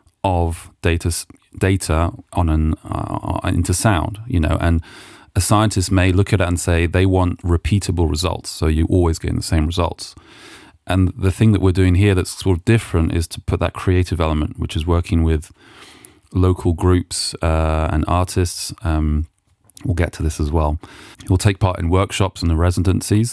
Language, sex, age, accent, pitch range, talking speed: English, male, 30-49, British, 85-100 Hz, 185 wpm